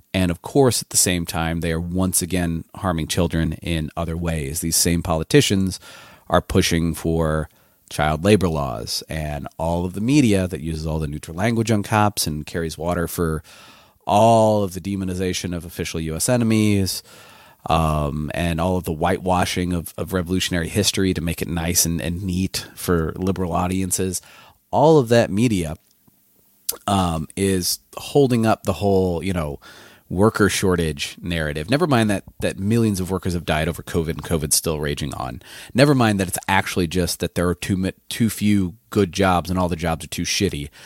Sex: male